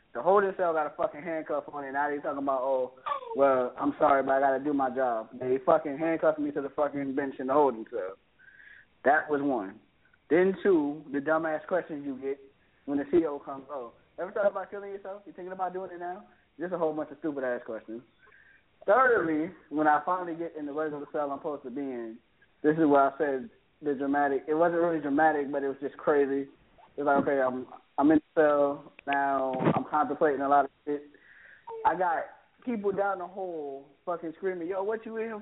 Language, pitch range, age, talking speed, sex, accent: English, 140-175 Hz, 20-39, 220 wpm, male, American